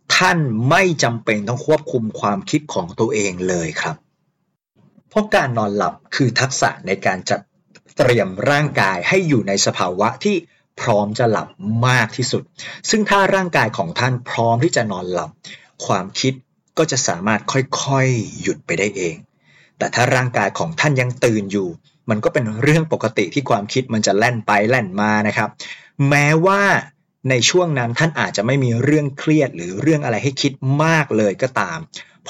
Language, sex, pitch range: Thai, male, 110-150 Hz